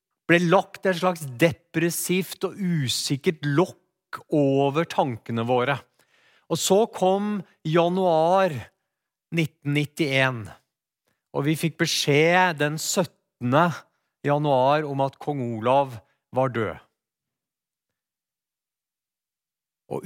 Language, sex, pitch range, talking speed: English, male, 140-180 Hz, 85 wpm